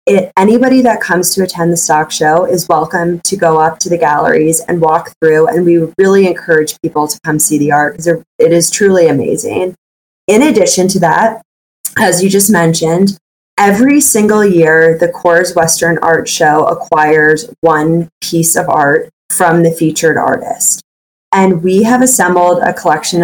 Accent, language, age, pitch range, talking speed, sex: American, English, 20-39, 165-195 Hz, 170 wpm, female